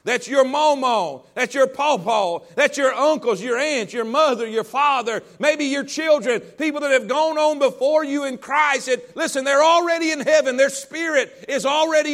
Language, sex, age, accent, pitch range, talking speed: English, male, 40-59, American, 225-285 Hz, 180 wpm